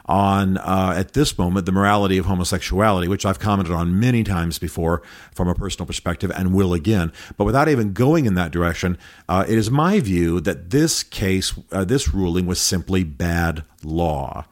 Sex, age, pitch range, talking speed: male, 40-59, 90-110 Hz, 185 wpm